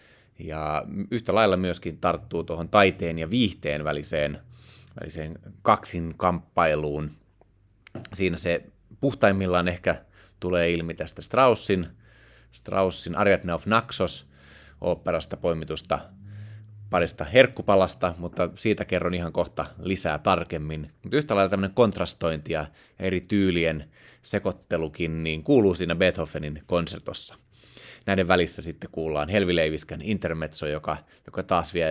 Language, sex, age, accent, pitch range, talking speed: Finnish, male, 30-49, native, 85-100 Hz, 110 wpm